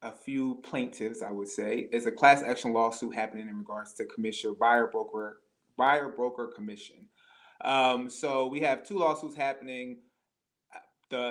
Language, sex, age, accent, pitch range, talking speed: English, male, 30-49, American, 115-130 Hz, 155 wpm